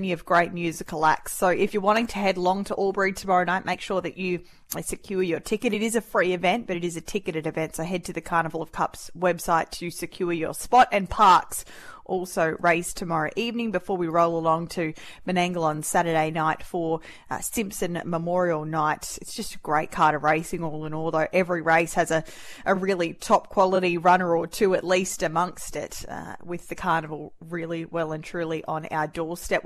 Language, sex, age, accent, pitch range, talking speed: English, female, 20-39, Australian, 165-190 Hz, 205 wpm